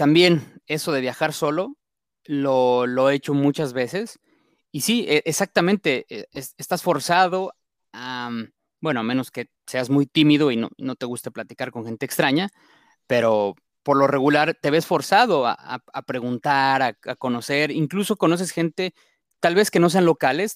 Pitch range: 125-165 Hz